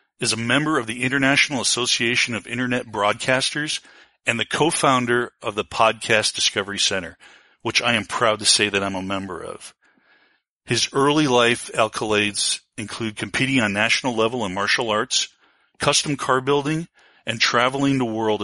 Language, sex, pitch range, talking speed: English, male, 105-130 Hz, 155 wpm